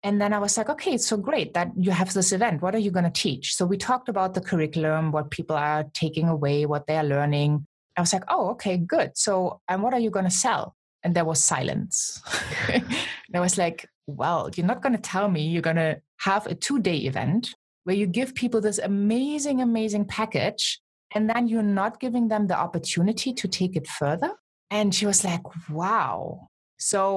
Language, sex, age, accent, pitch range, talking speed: English, female, 20-39, German, 165-210 Hz, 215 wpm